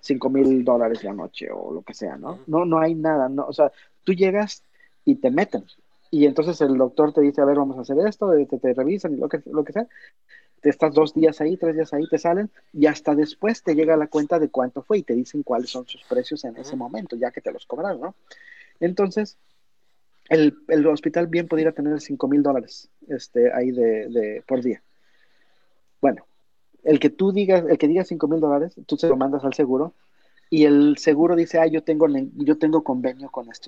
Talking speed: 225 wpm